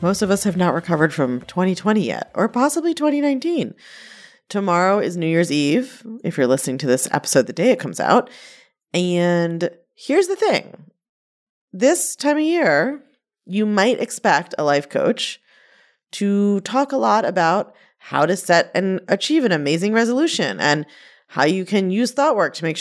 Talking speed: 170 wpm